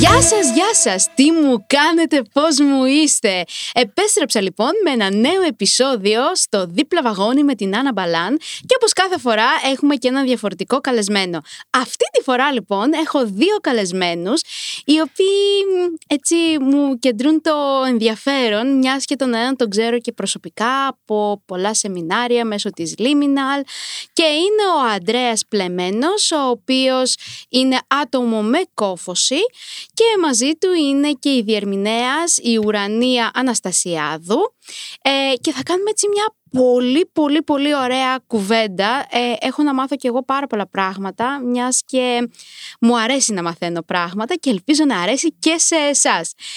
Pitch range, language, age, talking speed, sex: 220-310 Hz, Greek, 20-39, 145 wpm, female